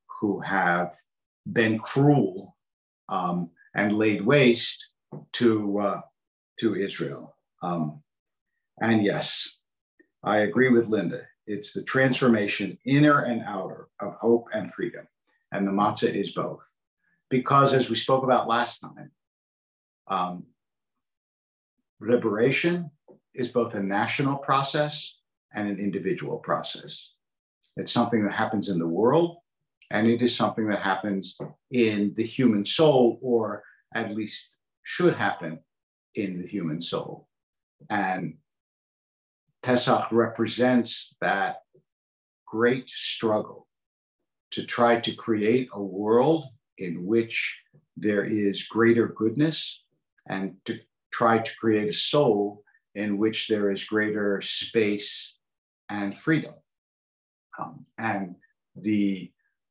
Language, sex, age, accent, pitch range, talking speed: English, male, 50-69, American, 100-125 Hz, 115 wpm